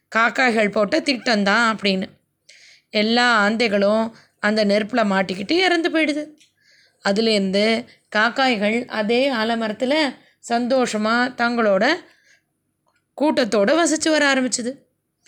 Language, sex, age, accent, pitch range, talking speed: Tamil, female, 20-39, native, 220-290 Hz, 85 wpm